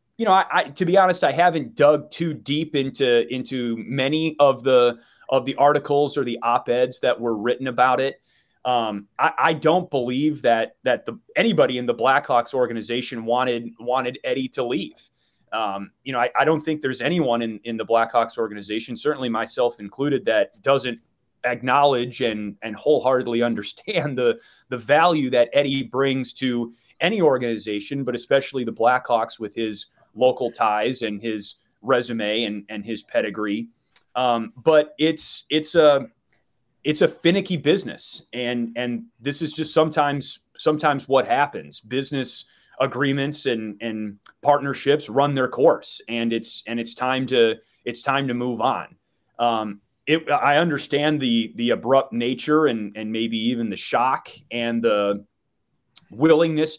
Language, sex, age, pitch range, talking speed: English, male, 30-49, 115-145 Hz, 155 wpm